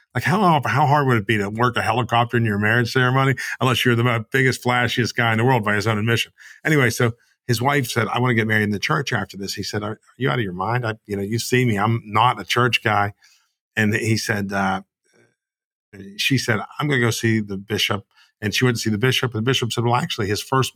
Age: 50-69